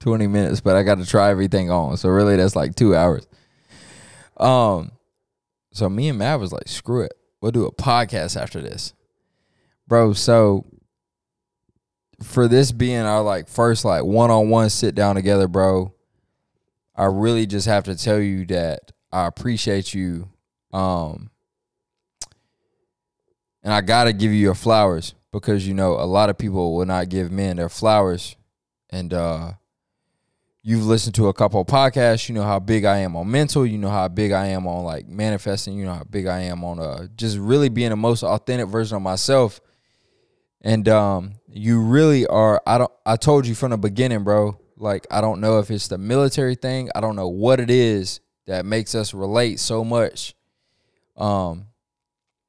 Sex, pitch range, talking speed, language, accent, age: male, 95-115 Hz, 175 wpm, English, American, 20-39